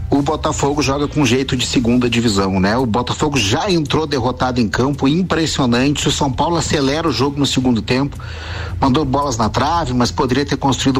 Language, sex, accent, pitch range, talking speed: Portuguese, male, Brazilian, 120-145 Hz, 185 wpm